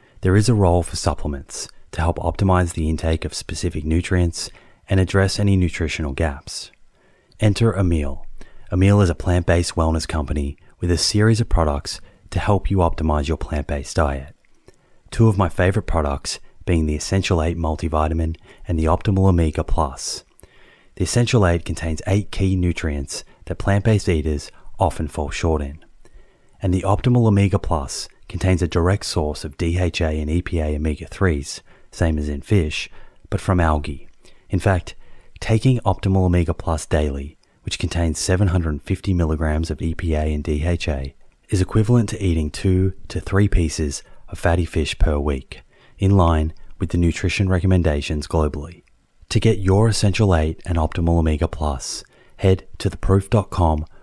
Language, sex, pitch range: English, male, 80-95 Hz